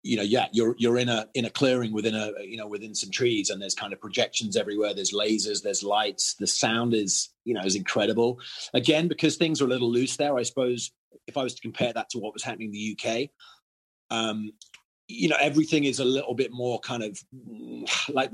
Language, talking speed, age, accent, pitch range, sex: English, 225 wpm, 30-49, British, 115-140 Hz, male